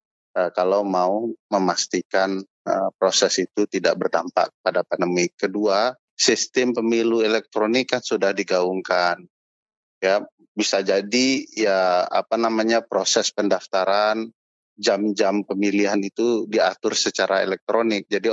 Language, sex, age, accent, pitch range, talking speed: Indonesian, male, 30-49, native, 95-115 Hz, 110 wpm